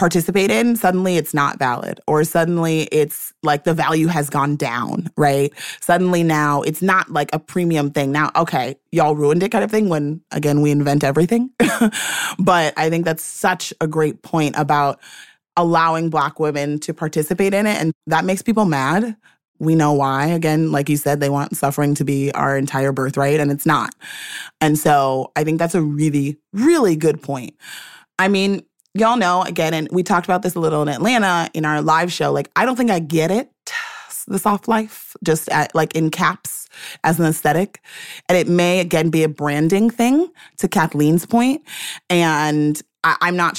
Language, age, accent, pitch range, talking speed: English, 30-49, American, 150-180 Hz, 185 wpm